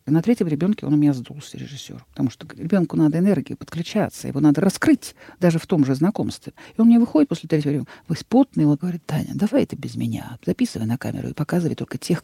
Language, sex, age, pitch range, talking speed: Russian, female, 50-69, 140-185 Hz, 225 wpm